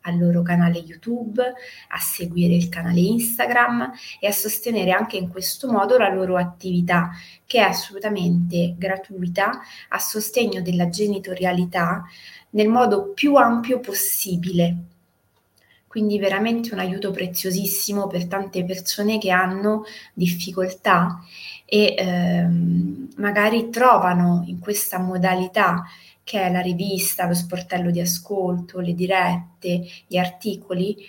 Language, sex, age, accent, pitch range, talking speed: Italian, female, 20-39, native, 180-215 Hz, 120 wpm